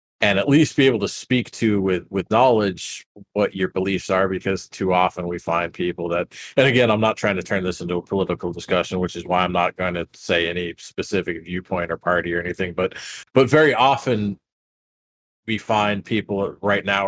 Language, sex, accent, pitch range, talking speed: English, male, American, 90-110 Hz, 205 wpm